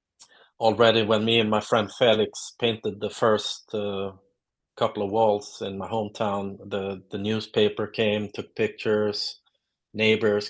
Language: English